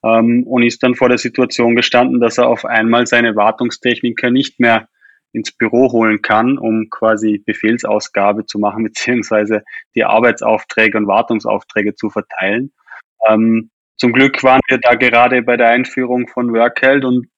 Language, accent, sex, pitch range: German, German, male, 110-130 Hz